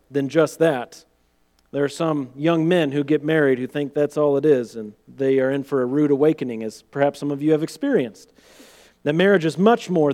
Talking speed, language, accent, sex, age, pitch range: 220 wpm, English, American, male, 40-59, 120-175 Hz